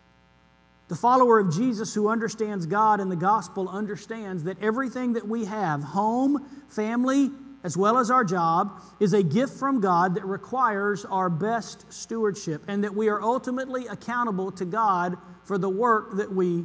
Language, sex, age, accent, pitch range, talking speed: English, male, 50-69, American, 180-225 Hz, 165 wpm